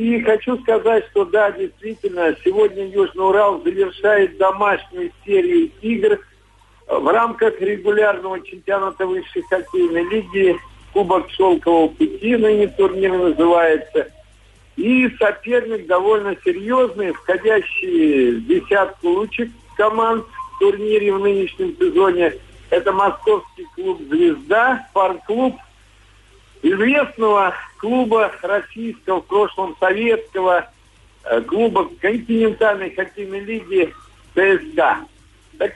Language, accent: Russian, native